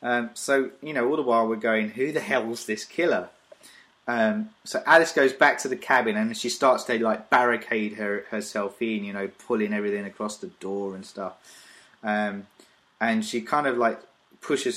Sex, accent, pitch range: male, British, 105-140 Hz